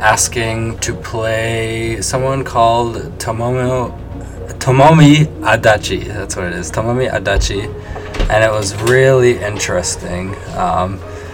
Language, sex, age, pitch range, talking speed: English, male, 20-39, 95-105 Hz, 100 wpm